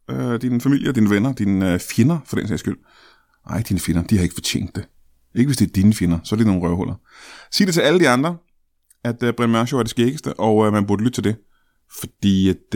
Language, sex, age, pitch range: Danish, male, 30-49, 95-130 Hz